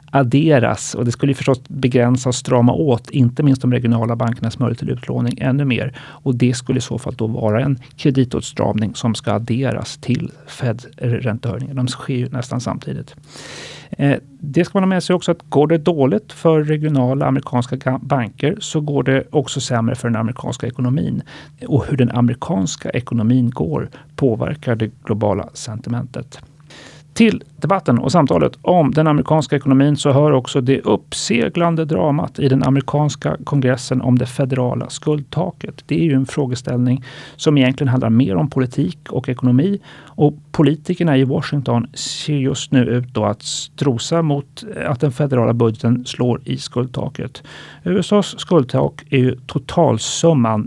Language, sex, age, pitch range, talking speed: Swedish, male, 40-59, 125-150 Hz, 155 wpm